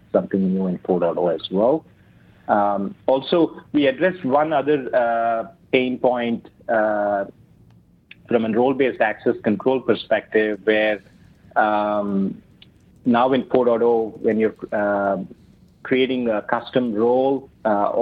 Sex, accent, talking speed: male, Indian, 115 wpm